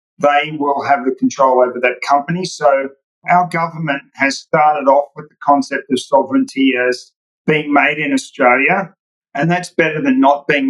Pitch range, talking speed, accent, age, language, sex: 135-155 Hz, 170 wpm, Australian, 40-59, English, male